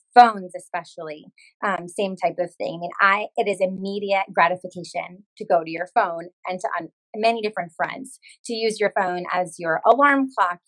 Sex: female